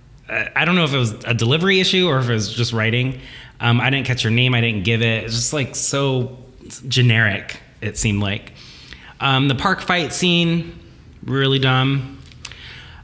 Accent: American